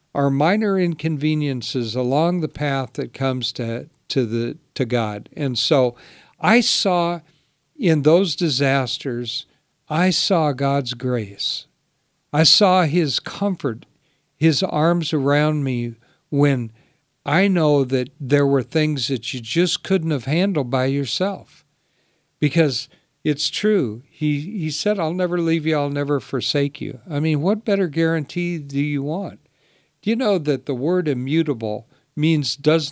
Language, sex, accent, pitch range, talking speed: English, male, American, 135-170 Hz, 140 wpm